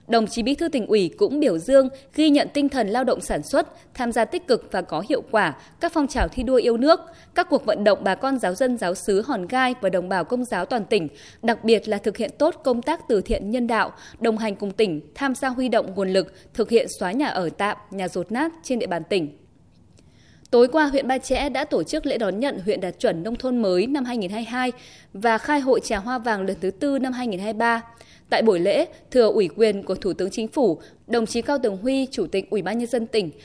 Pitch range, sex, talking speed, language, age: 205-275 Hz, female, 250 wpm, Vietnamese, 20-39